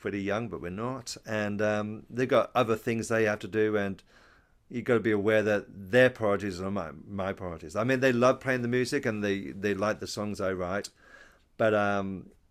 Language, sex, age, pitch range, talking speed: English, male, 40-59, 95-110 Hz, 215 wpm